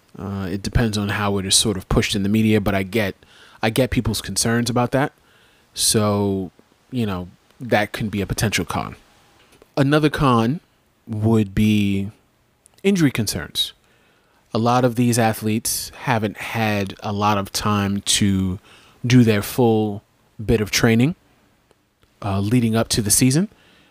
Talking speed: 155 wpm